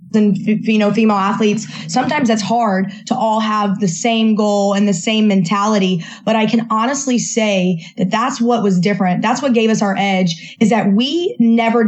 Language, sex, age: English, female, 20-39